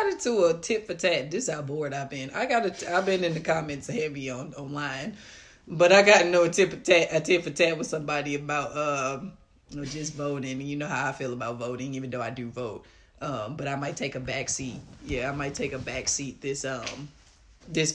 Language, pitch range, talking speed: English, 130-150 Hz, 235 wpm